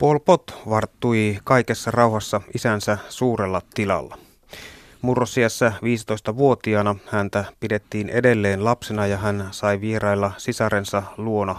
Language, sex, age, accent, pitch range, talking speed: Finnish, male, 30-49, native, 100-120 Hz, 105 wpm